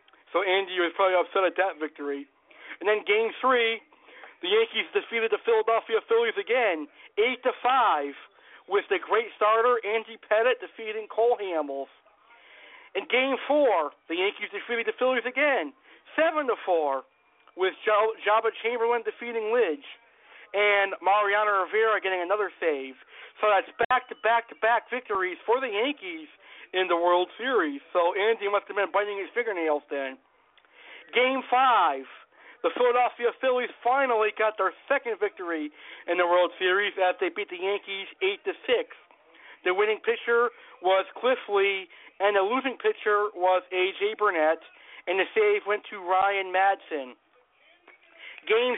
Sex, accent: male, American